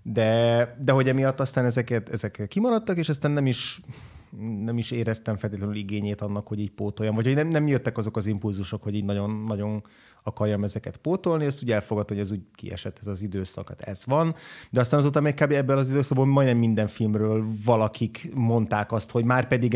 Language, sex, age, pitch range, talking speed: Hungarian, male, 30-49, 105-120 Hz, 195 wpm